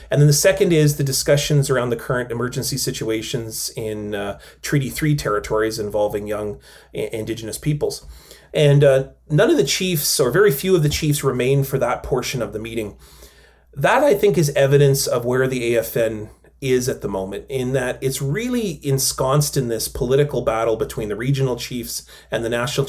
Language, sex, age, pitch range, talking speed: English, male, 30-49, 120-150 Hz, 180 wpm